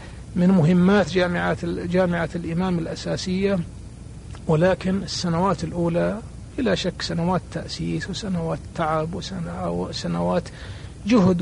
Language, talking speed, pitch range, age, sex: Arabic, 85 wpm, 110-185 Hz, 60-79, male